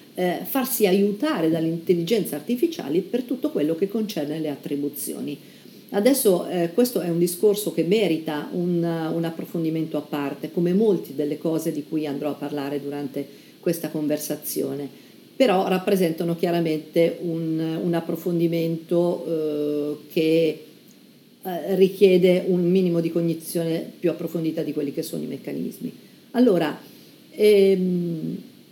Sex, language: female, Italian